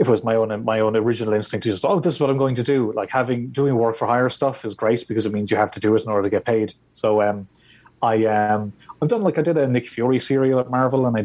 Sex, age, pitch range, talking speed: male, 30-49, 105-130 Hz, 310 wpm